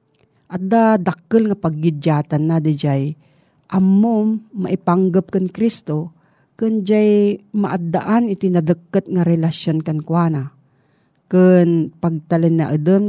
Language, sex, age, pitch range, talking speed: Filipino, female, 40-59, 155-195 Hz, 110 wpm